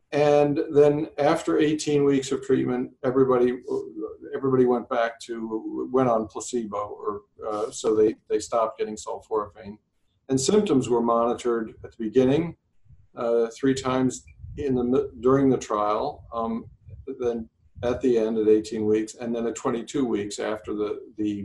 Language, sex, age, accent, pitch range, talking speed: English, male, 50-69, American, 115-140 Hz, 150 wpm